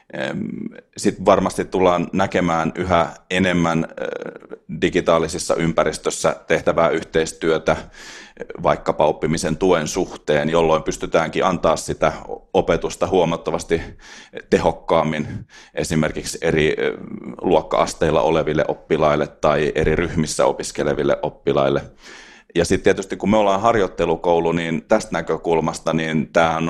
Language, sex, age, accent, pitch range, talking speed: Finnish, male, 30-49, native, 75-90 Hz, 100 wpm